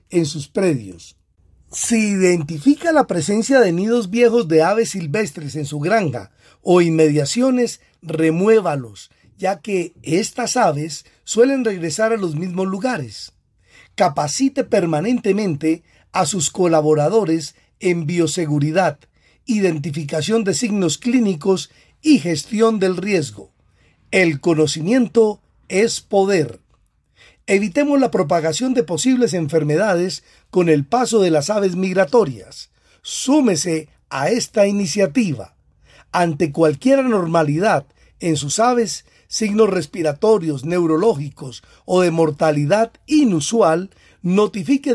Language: Spanish